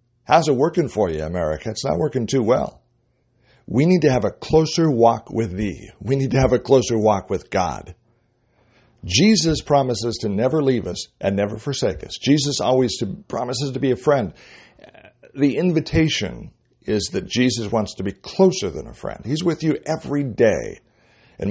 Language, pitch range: English, 115-140 Hz